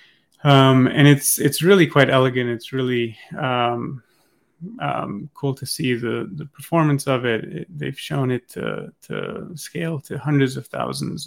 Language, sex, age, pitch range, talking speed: English, male, 30-49, 130-170 Hz, 160 wpm